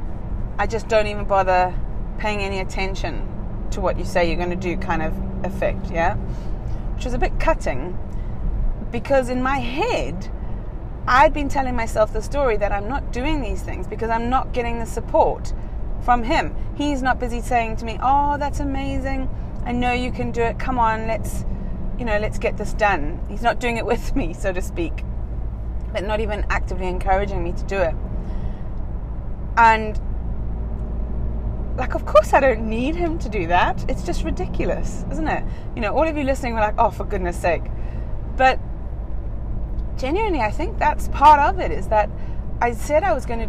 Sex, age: female, 30-49